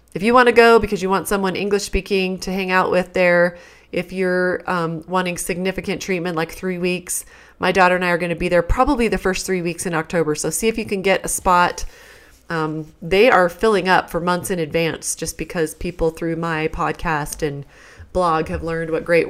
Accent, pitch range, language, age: American, 165-190 Hz, English, 30-49